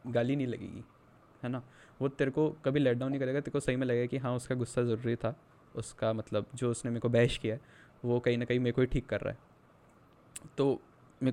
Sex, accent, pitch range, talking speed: male, native, 120-145 Hz, 245 wpm